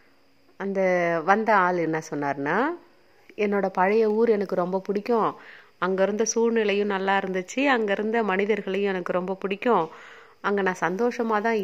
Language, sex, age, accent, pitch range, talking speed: Tamil, female, 30-49, native, 170-225 Hz, 130 wpm